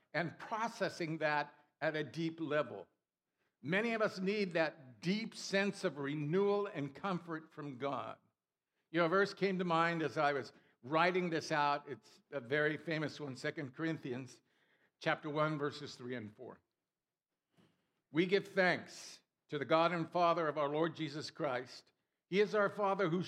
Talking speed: 160 wpm